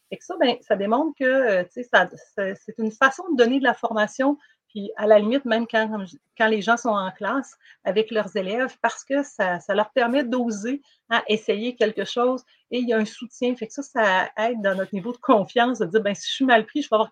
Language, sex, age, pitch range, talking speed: French, female, 40-59, 205-250 Hz, 250 wpm